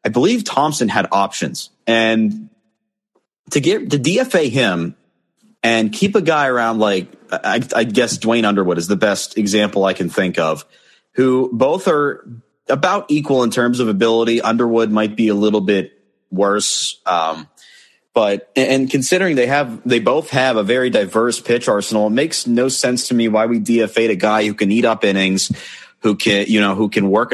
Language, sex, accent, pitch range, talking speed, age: English, male, American, 100-120 Hz, 180 wpm, 30-49